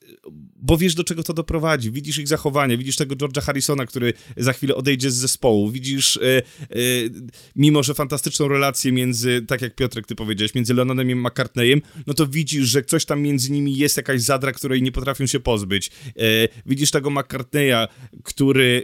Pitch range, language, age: 120-145 Hz, Polish, 30-49